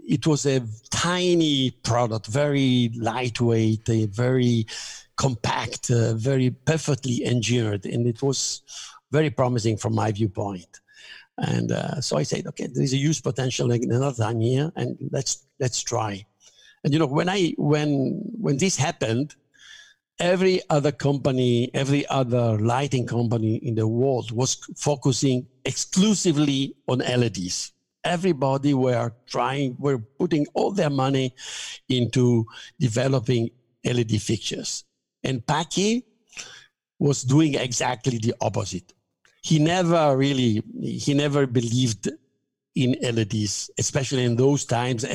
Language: English